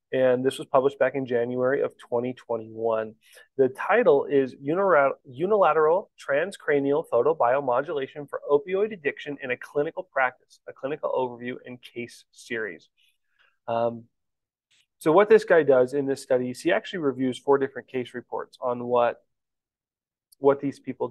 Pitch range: 125-145 Hz